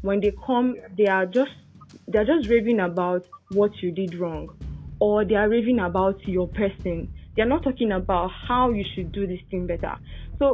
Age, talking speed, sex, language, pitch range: 10-29, 190 wpm, female, English, 185-230 Hz